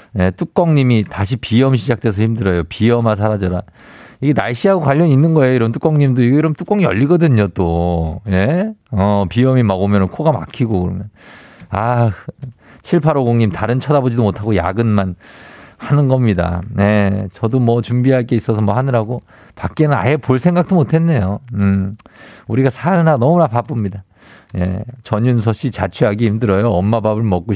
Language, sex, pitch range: Korean, male, 100-140 Hz